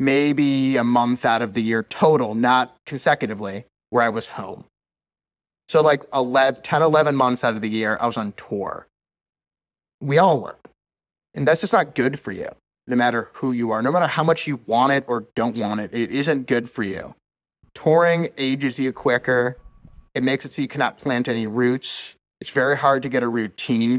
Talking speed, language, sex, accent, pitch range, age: 195 wpm, English, male, American, 115-140 Hz, 30-49